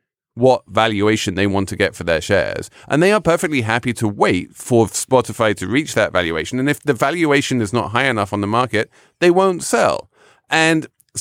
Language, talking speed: English, 200 wpm